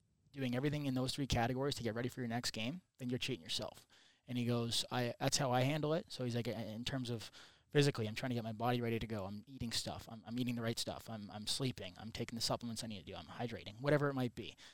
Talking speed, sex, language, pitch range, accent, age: 275 wpm, male, English, 115-135 Hz, American, 20-39